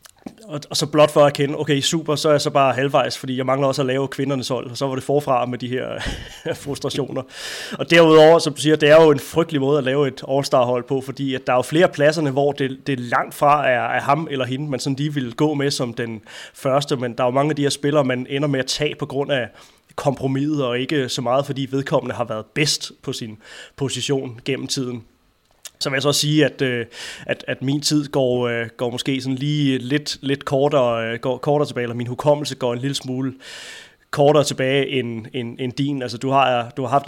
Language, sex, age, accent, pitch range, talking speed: Danish, male, 20-39, native, 125-145 Hz, 235 wpm